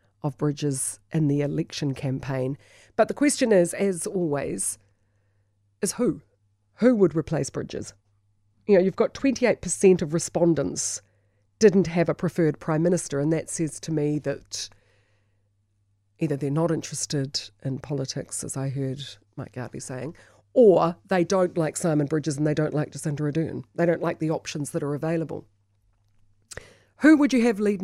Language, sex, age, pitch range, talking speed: English, female, 40-59, 110-175 Hz, 160 wpm